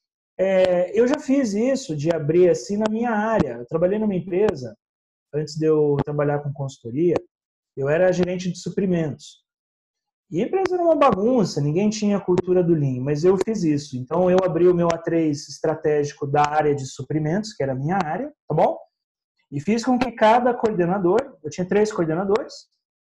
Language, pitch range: Portuguese, 155-225 Hz